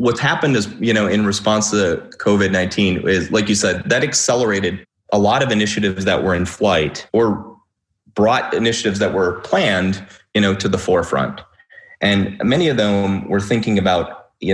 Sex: male